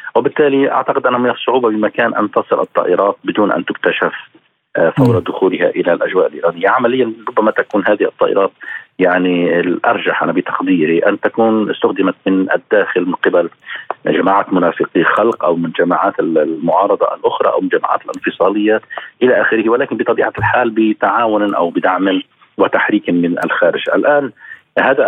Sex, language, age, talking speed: male, Arabic, 40-59, 140 wpm